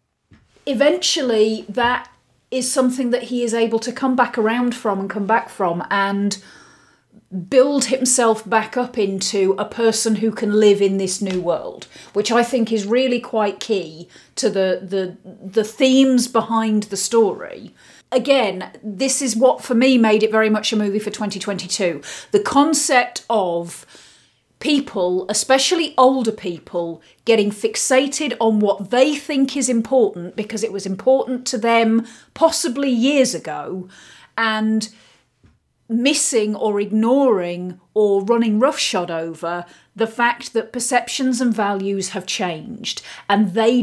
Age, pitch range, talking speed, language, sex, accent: 40-59, 195-250 Hz, 140 wpm, English, female, British